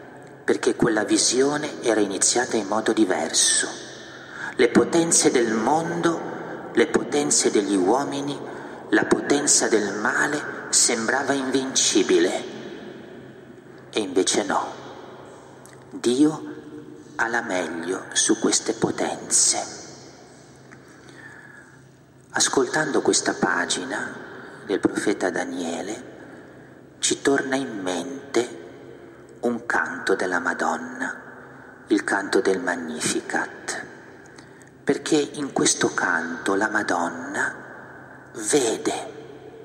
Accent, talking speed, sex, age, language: native, 85 wpm, male, 40-59, Italian